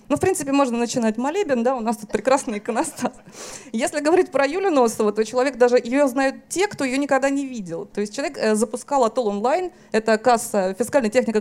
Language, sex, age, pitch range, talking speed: Russian, female, 20-39, 205-265 Hz, 205 wpm